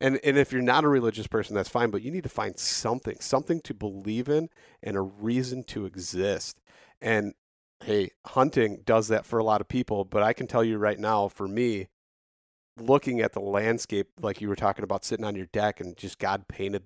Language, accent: English, American